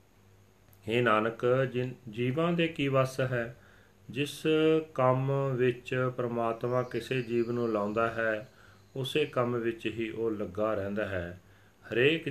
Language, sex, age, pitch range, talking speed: Punjabi, male, 40-59, 100-125 Hz, 120 wpm